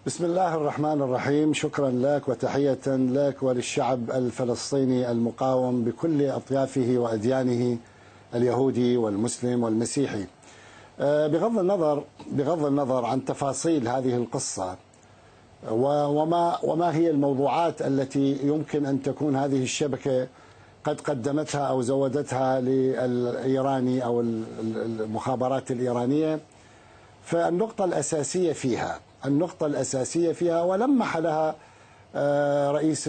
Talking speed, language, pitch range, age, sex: 95 wpm, Arabic, 125-155 Hz, 50-69, male